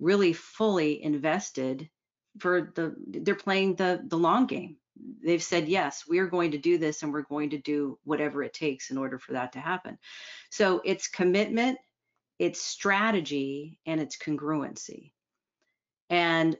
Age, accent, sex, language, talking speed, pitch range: 40-59, American, female, English, 155 wpm, 150-190 Hz